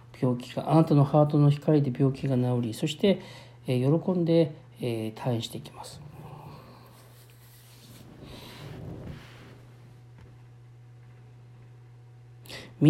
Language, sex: Japanese, male